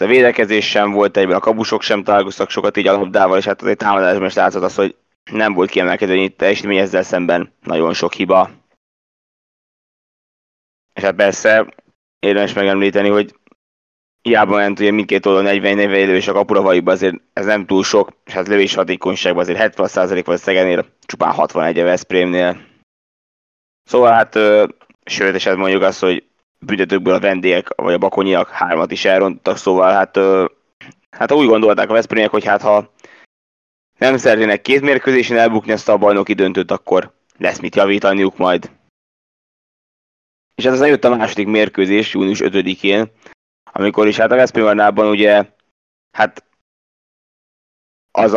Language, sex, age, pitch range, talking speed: Hungarian, male, 20-39, 95-110 Hz, 150 wpm